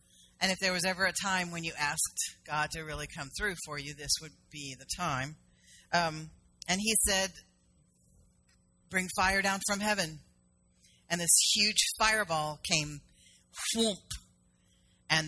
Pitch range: 150-185 Hz